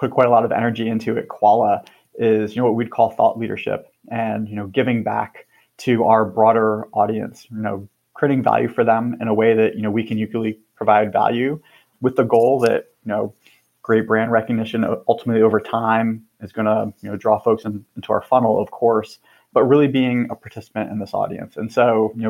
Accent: American